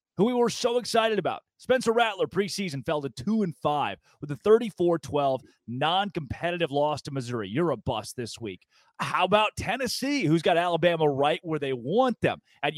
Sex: male